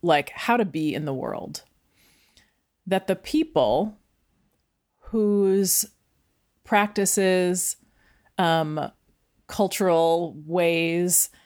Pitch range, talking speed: 160-195 Hz, 80 wpm